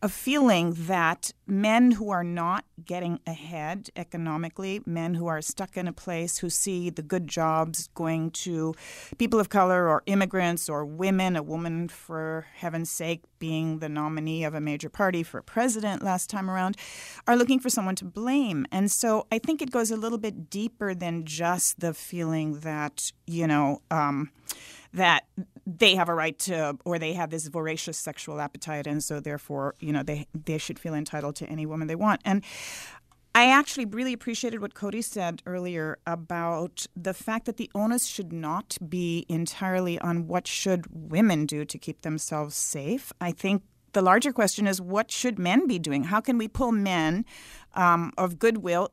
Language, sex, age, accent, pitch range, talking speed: English, female, 40-59, American, 160-210 Hz, 180 wpm